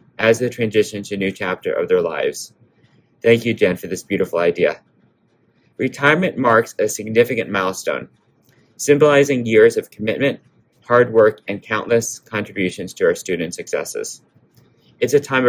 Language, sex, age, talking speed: English, male, 30-49, 145 wpm